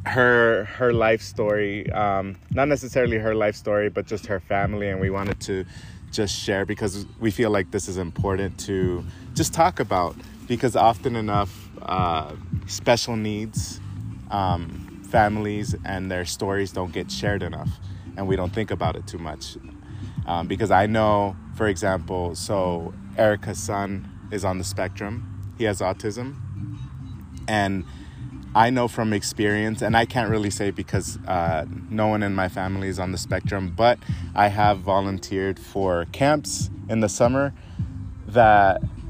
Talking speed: 155 wpm